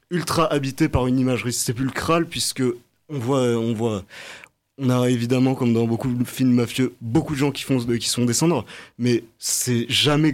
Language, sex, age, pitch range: French, male, 20-39, 120-140 Hz